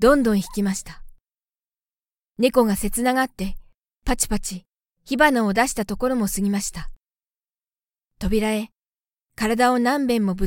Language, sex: Japanese, female